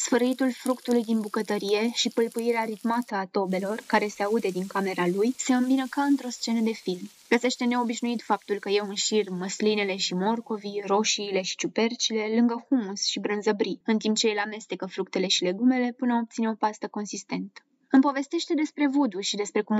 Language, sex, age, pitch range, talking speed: Romanian, female, 20-39, 210-255 Hz, 175 wpm